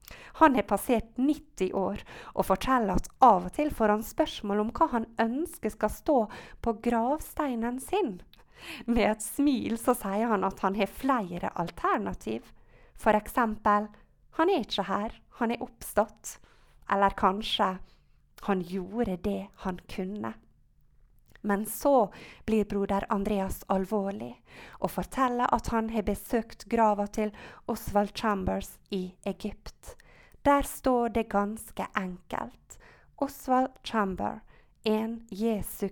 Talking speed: 130 wpm